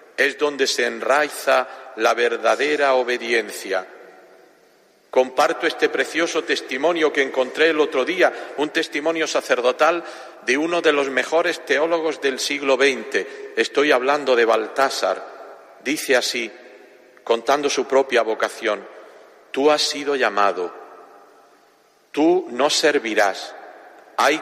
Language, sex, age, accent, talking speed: Spanish, male, 50-69, Spanish, 115 wpm